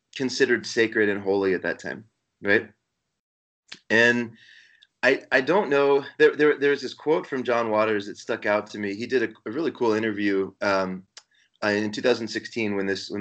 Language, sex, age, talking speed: English, male, 30-49, 180 wpm